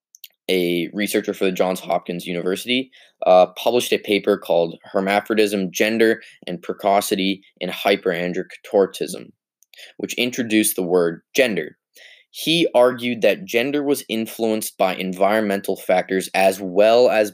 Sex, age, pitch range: male, 20-39, 90-115 Hz